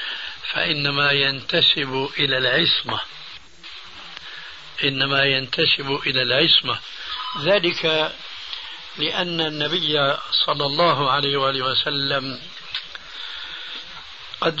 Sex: male